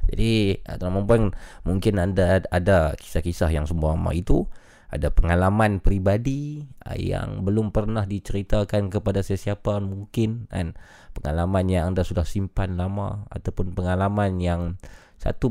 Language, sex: Malay, male